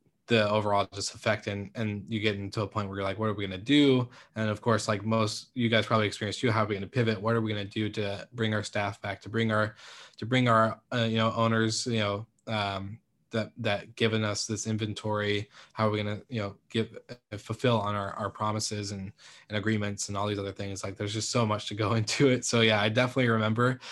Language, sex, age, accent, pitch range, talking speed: English, male, 20-39, American, 105-115 Hz, 255 wpm